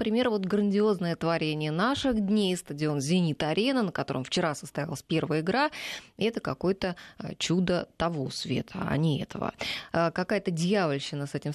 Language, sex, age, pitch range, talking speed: Russian, female, 20-39, 155-200 Hz, 135 wpm